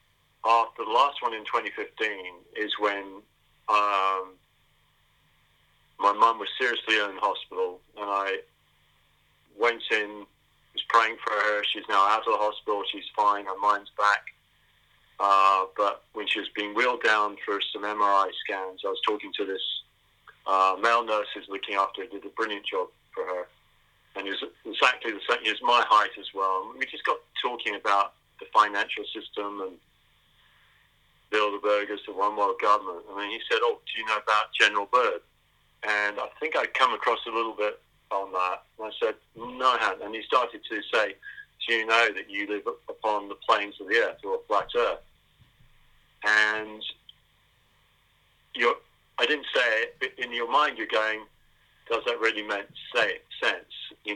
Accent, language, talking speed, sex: British, English, 175 wpm, male